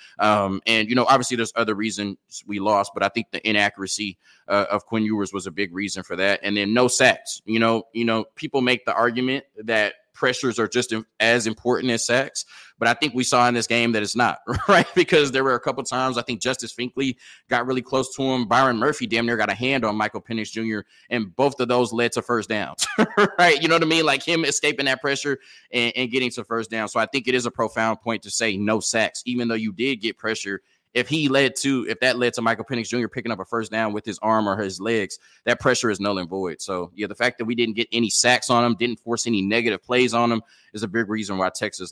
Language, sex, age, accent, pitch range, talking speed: English, male, 20-39, American, 110-125 Hz, 255 wpm